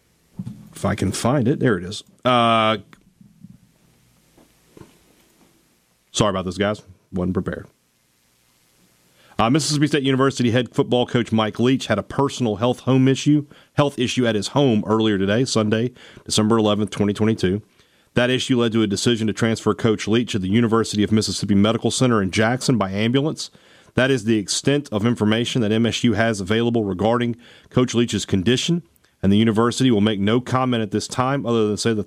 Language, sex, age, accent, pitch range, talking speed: English, male, 40-59, American, 100-125 Hz, 170 wpm